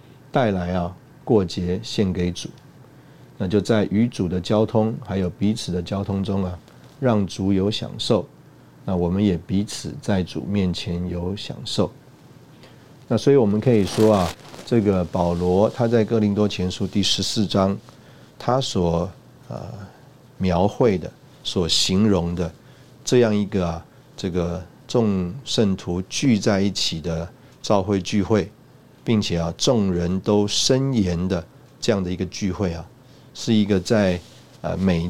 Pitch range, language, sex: 90-120 Hz, Chinese, male